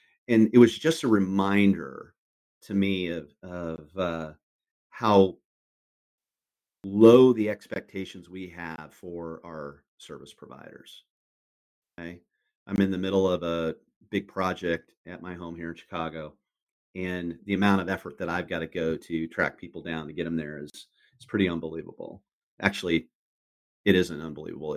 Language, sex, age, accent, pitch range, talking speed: English, male, 40-59, American, 85-105 Hz, 150 wpm